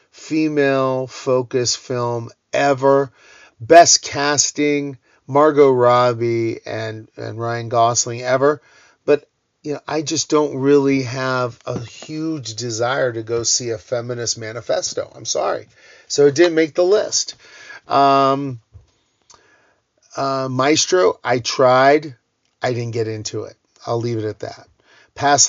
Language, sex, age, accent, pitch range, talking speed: English, male, 40-59, American, 115-140 Hz, 125 wpm